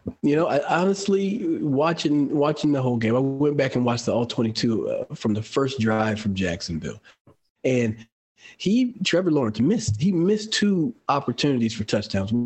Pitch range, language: 110-145 Hz, English